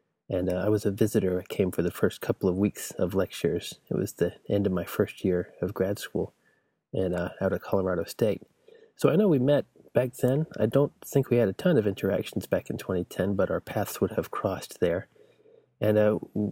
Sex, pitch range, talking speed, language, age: male, 100-135 Hz, 220 wpm, English, 30-49